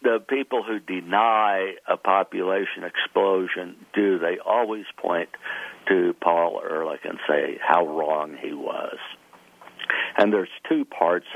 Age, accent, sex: 60-79, American, male